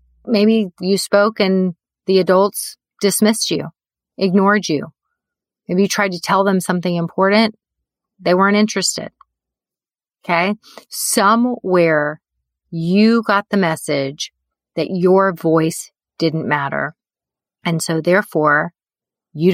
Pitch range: 160-200 Hz